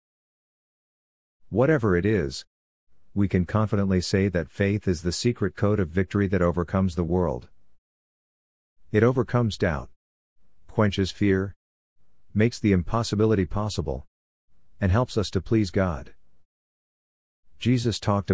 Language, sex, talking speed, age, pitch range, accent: English, male, 120 wpm, 50-69, 85-105 Hz, American